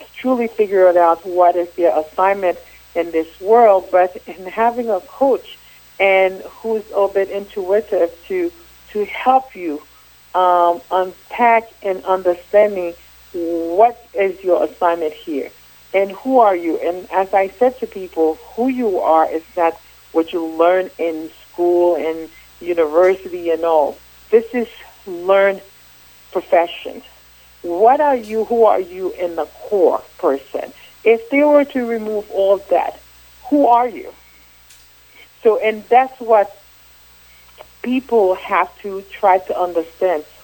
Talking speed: 140 wpm